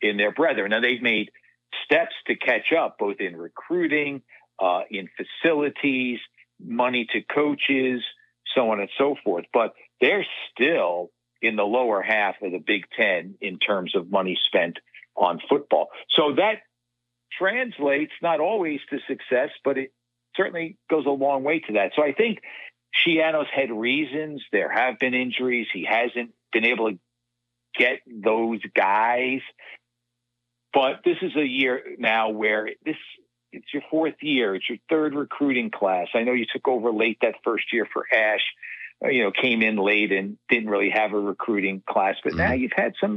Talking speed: 170 wpm